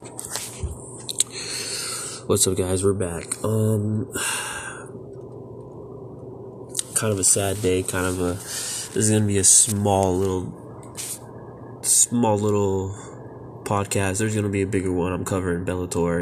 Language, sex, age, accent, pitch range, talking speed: English, male, 20-39, American, 95-110 Hz, 130 wpm